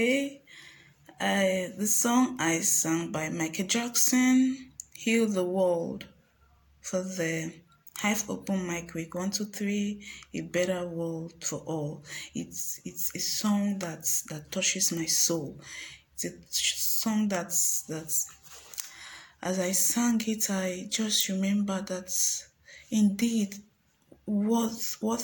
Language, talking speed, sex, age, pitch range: English, 115 wpm, female, 20-39, 185-230 Hz